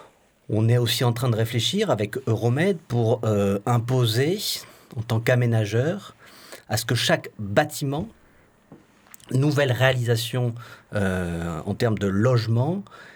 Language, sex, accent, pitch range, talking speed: French, male, French, 110-135 Hz, 125 wpm